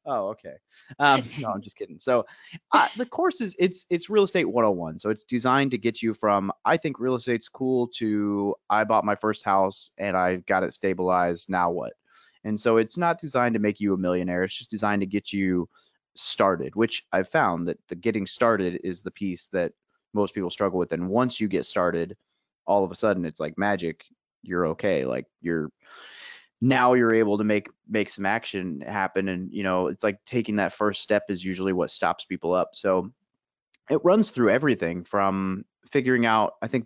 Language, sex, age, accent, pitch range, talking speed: English, male, 30-49, American, 95-115 Hz, 200 wpm